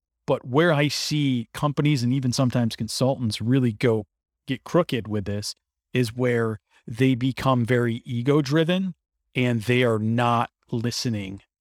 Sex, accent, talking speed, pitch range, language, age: male, American, 135 wpm, 110-130 Hz, English, 40-59